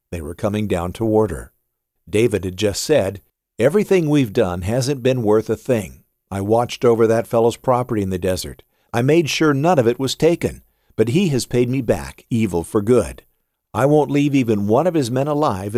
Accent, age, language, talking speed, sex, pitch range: American, 50-69, English, 200 wpm, male, 100-135 Hz